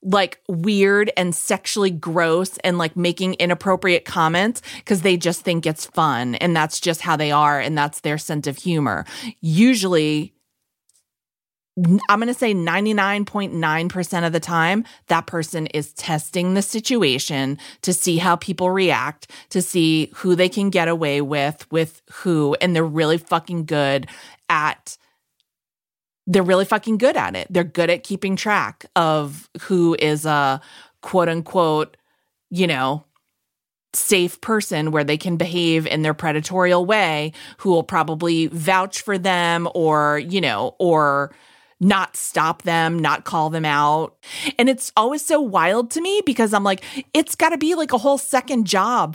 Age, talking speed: 30-49, 155 wpm